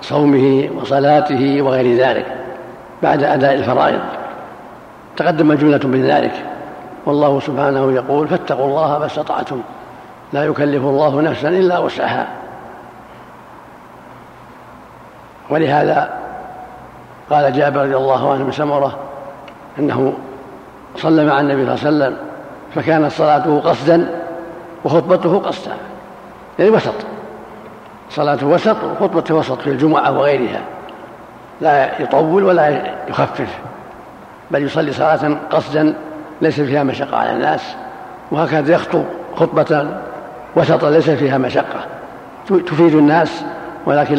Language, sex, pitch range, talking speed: Arabic, male, 140-165 Hz, 100 wpm